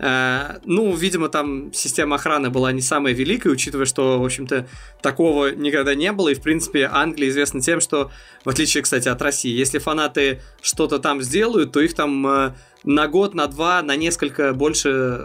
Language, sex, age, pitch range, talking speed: Russian, male, 20-39, 135-160 Hz, 175 wpm